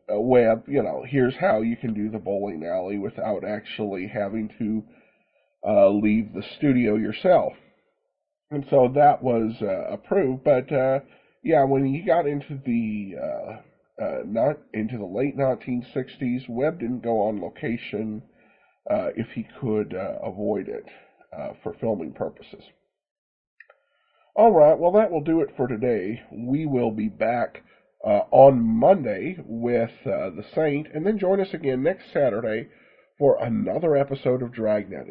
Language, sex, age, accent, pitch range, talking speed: English, male, 40-59, American, 110-145 Hz, 150 wpm